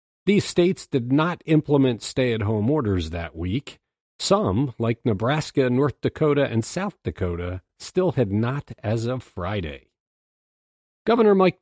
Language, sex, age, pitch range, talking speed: English, male, 50-69, 105-150 Hz, 130 wpm